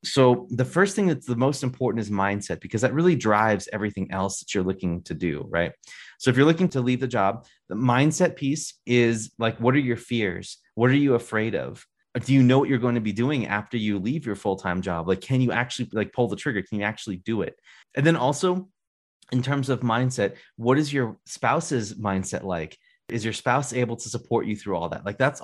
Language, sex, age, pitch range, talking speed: English, male, 30-49, 105-130 Hz, 230 wpm